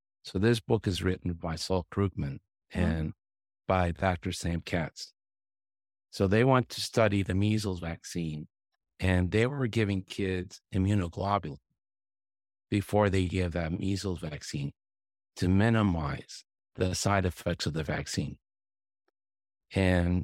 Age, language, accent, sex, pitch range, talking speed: 50-69, English, American, male, 85-100 Hz, 125 wpm